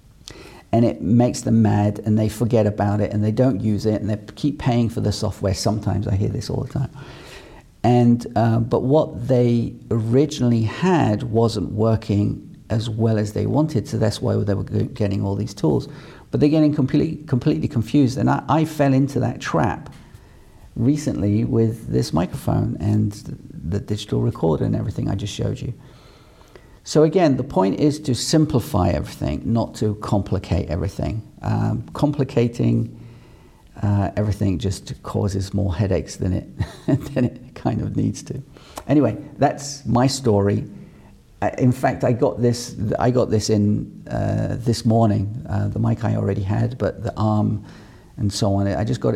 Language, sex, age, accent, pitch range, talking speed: English, male, 50-69, British, 105-130 Hz, 170 wpm